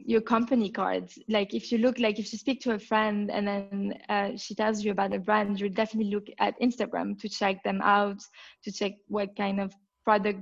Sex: female